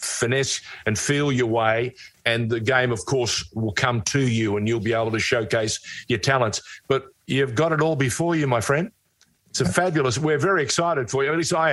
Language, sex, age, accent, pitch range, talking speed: English, male, 50-69, Australian, 115-140 Hz, 215 wpm